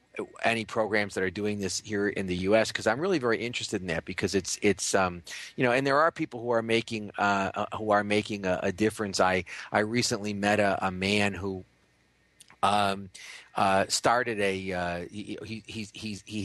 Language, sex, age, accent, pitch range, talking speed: English, male, 30-49, American, 95-110 Hz, 200 wpm